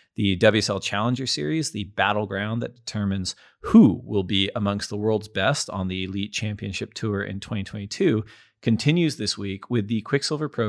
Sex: male